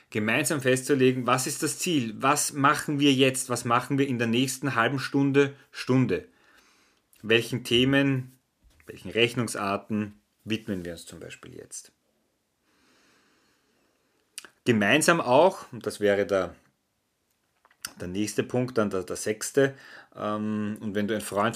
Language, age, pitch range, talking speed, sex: German, 30-49, 110-135 Hz, 135 wpm, male